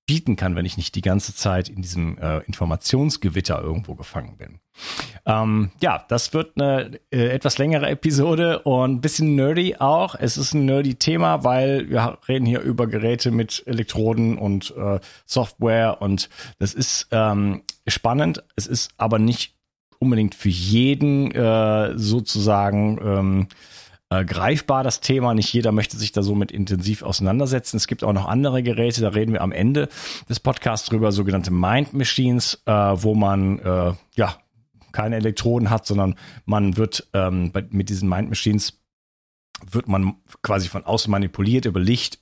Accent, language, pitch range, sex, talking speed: German, German, 100-125 Hz, male, 160 wpm